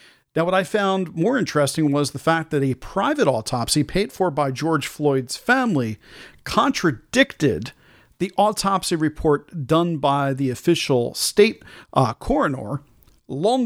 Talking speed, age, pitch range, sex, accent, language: 135 wpm, 50-69, 140-175 Hz, male, American, English